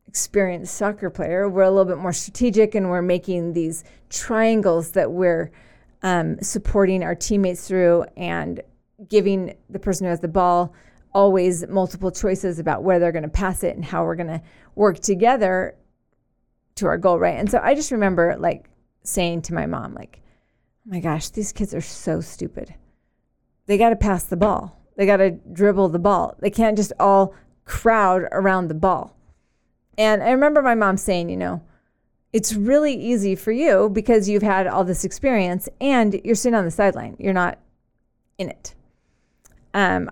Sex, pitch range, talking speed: female, 175-210 Hz, 180 wpm